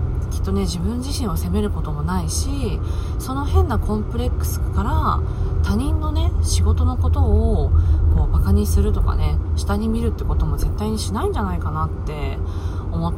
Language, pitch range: Japanese, 80-90 Hz